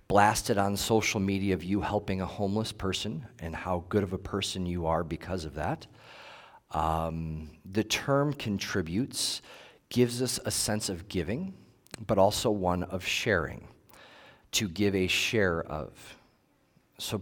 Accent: American